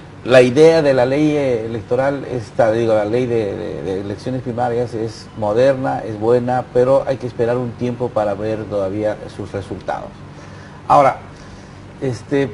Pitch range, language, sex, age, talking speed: 110-140 Hz, English, male, 50-69, 155 wpm